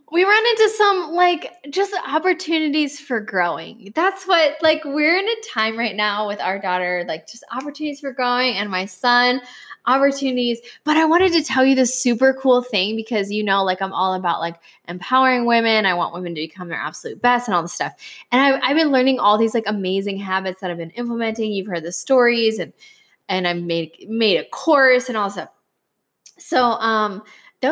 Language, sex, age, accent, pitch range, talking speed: English, female, 10-29, American, 175-260 Hz, 205 wpm